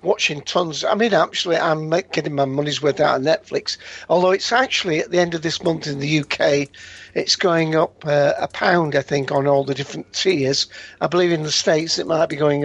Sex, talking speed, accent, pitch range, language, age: male, 225 wpm, British, 145-180 Hz, English, 50-69